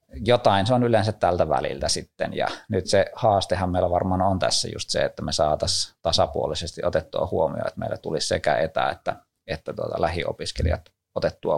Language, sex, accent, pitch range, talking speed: Finnish, male, native, 85-110 Hz, 170 wpm